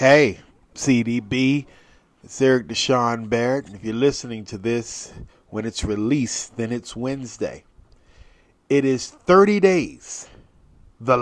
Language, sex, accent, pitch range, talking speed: English, male, American, 110-140 Hz, 125 wpm